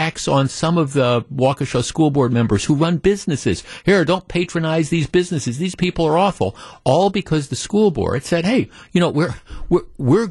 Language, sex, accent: English, male, American